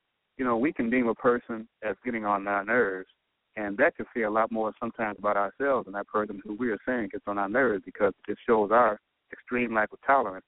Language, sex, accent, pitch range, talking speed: English, male, American, 100-135 Hz, 235 wpm